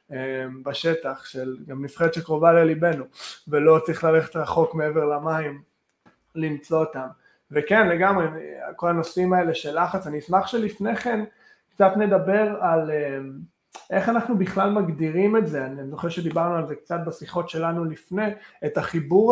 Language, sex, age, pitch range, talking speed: Hebrew, male, 20-39, 150-180 Hz, 140 wpm